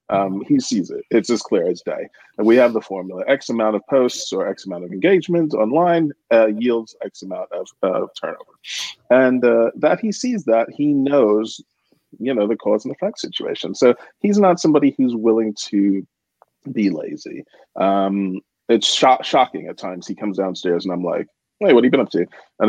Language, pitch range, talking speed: English, 100-140 Hz, 195 wpm